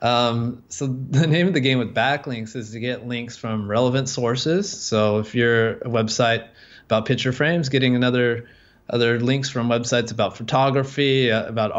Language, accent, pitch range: English, American, 110-130 Hz